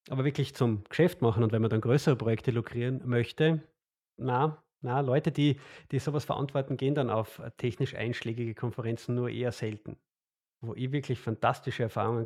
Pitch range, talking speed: 115-140 Hz, 165 wpm